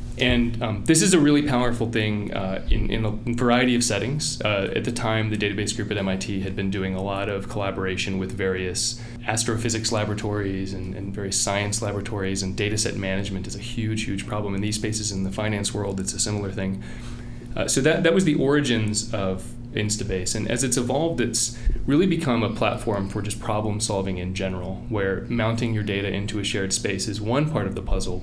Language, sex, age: English, male, 20-39